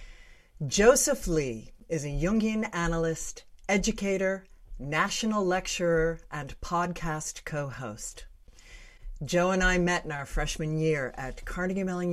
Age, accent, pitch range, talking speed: 50-69, American, 150-190 Hz, 115 wpm